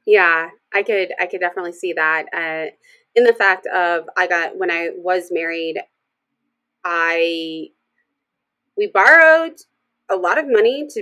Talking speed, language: 145 wpm, English